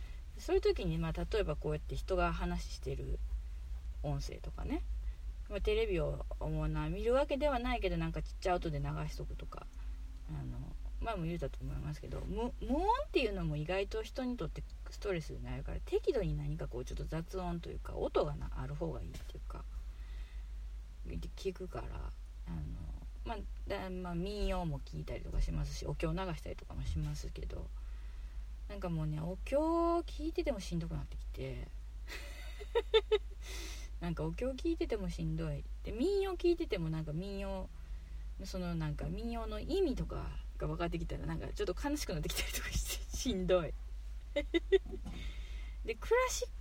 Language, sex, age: Japanese, female, 30-49